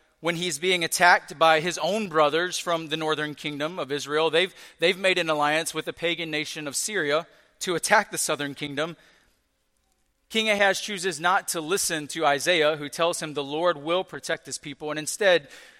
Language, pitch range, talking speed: English, 145-175 Hz, 185 wpm